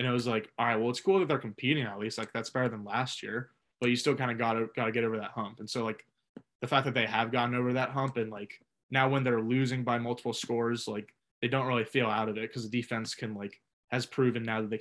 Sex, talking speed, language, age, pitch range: male, 285 wpm, English, 20-39, 110-125 Hz